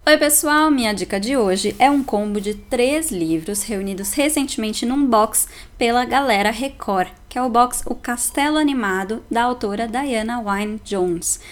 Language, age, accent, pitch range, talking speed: Portuguese, 10-29, Brazilian, 200-270 Hz, 155 wpm